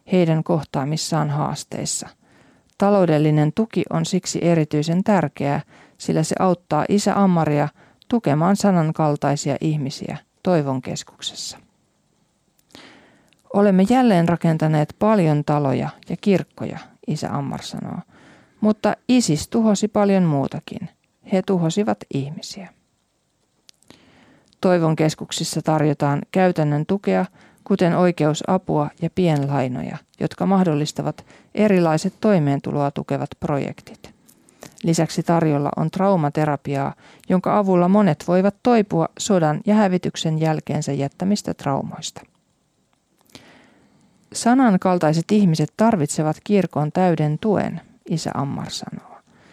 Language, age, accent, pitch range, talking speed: Finnish, 40-59, native, 150-200 Hz, 90 wpm